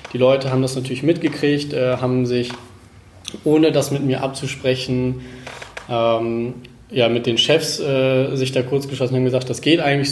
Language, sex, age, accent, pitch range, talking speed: German, male, 20-39, German, 125-140 Hz, 170 wpm